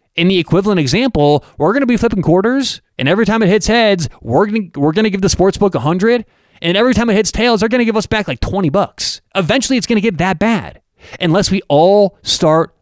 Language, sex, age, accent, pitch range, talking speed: English, male, 20-39, American, 135-195 Hz, 250 wpm